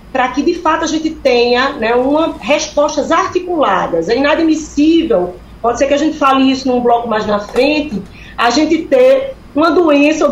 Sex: female